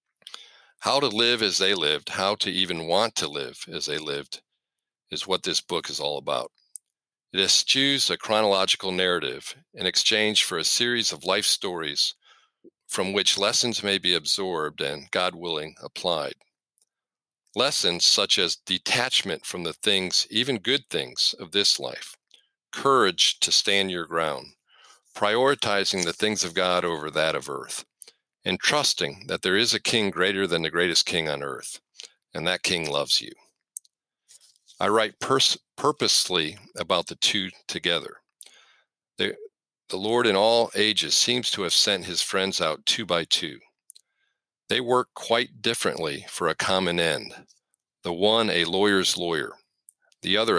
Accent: American